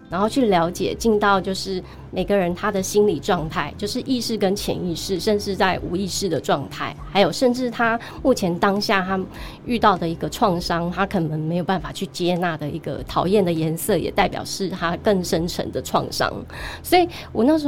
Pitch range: 175-220 Hz